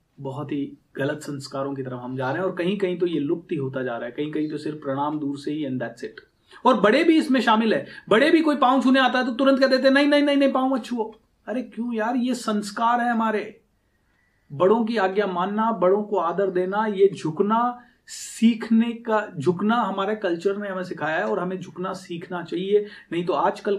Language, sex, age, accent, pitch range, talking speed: Hindi, male, 30-49, native, 155-220 Hz, 220 wpm